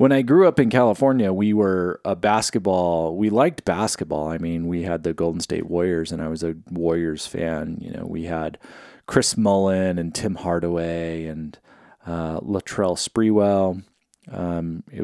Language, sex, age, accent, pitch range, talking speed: English, male, 30-49, American, 85-120 Hz, 170 wpm